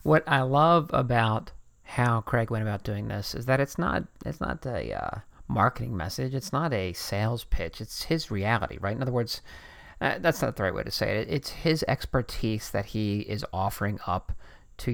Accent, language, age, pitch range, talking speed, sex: American, English, 40-59, 110-140 Hz, 200 wpm, male